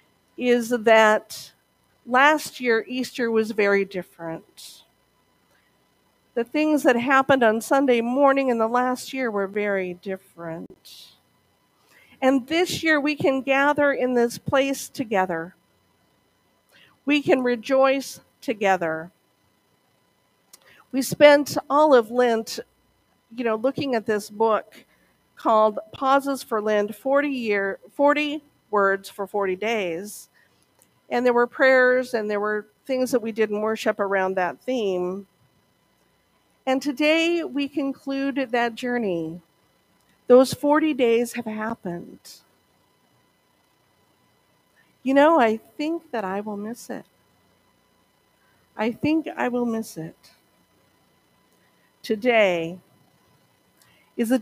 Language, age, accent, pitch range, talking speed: English, 50-69, American, 205-270 Hz, 110 wpm